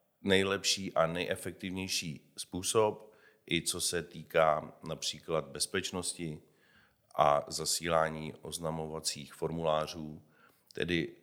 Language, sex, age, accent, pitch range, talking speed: Czech, male, 50-69, native, 80-90 Hz, 80 wpm